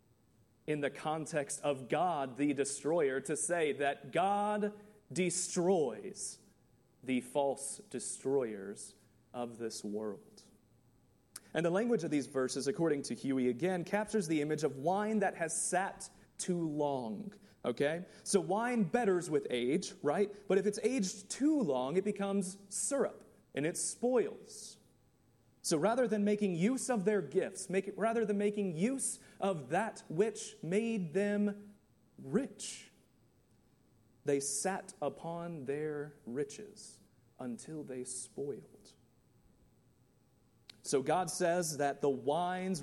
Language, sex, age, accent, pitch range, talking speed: English, male, 30-49, American, 140-200 Hz, 125 wpm